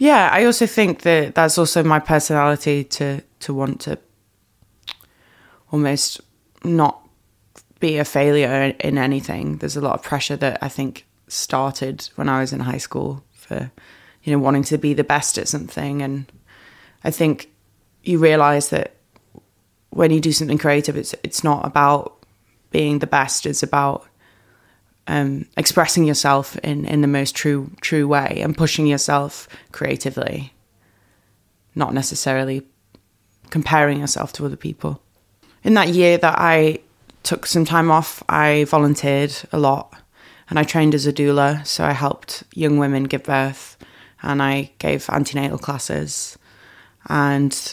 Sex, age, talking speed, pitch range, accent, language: female, 20-39, 150 wpm, 135-150 Hz, British, English